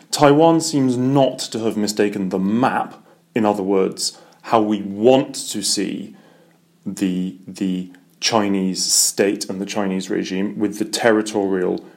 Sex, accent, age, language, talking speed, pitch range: male, British, 30-49, English, 135 wpm, 100-125 Hz